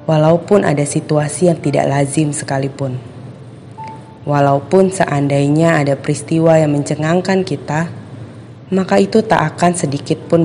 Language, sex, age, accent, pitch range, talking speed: Indonesian, female, 20-39, native, 135-160 Hz, 110 wpm